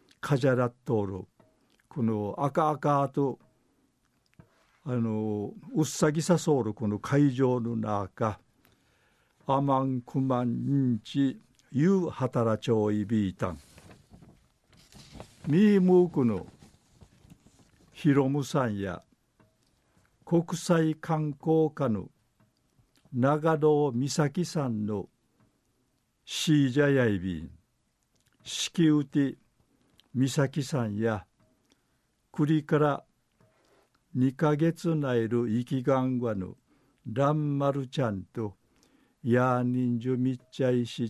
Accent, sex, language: native, male, Japanese